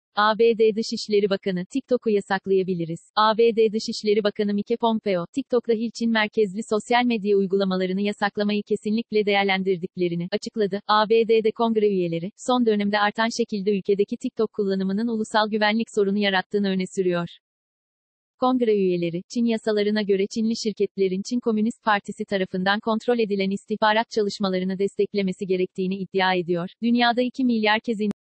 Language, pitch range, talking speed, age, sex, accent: Turkish, 200-230 Hz, 125 wpm, 40-59, female, native